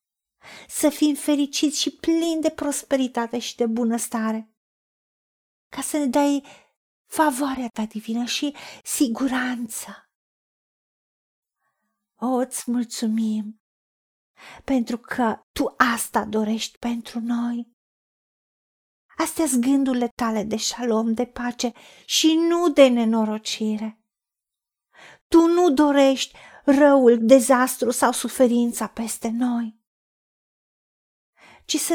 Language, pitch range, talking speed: Romanian, 235-295 Hz, 95 wpm